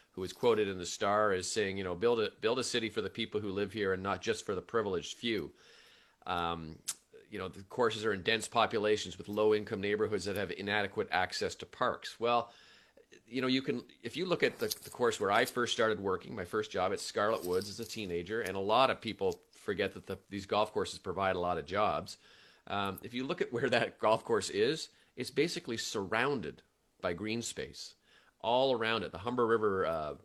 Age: 40-59